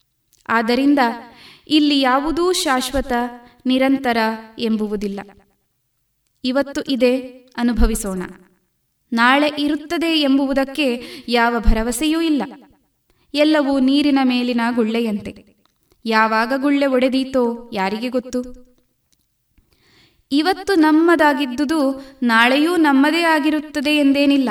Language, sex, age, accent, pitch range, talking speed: Kannada, female, 20-39, native, 235-290 Hz, 75 wpm